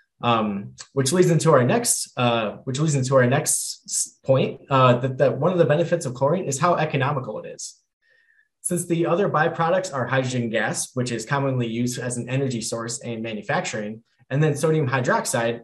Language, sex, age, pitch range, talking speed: English, male, 20-39, 125-170 Hz, 185 wpm